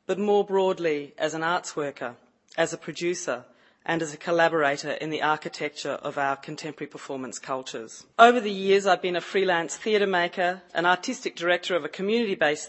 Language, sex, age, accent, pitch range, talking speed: English, female, 40-59, Australian, 155-190 Hz, 175 wpm